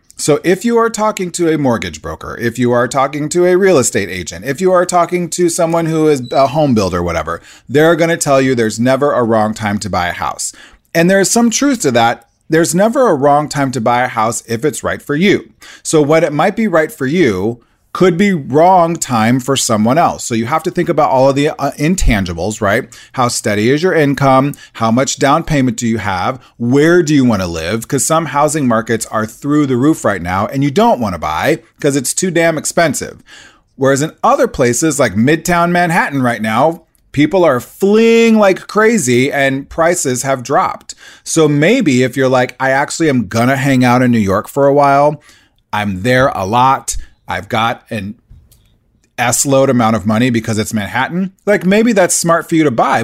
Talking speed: 210 wpm